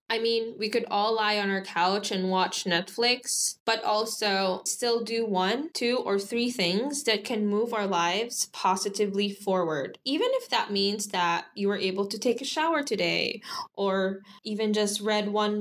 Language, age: English, 10-29